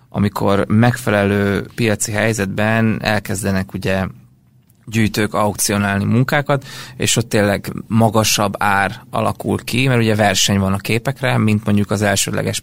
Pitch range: 100-120 Hz